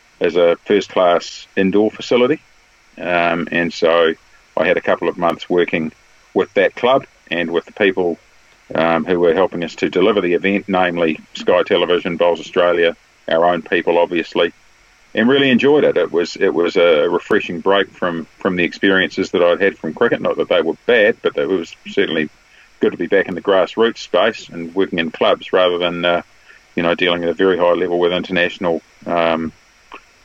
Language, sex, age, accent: English, male, 40-59, Australian